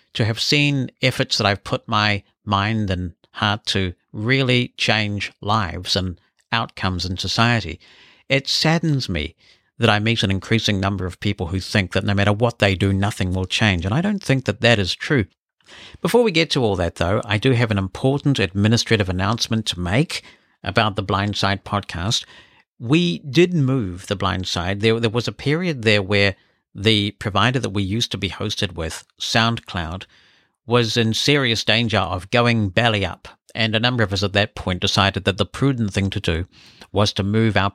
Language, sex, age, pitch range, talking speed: English, male, 60-79, 100-125 Hz, 185 wpm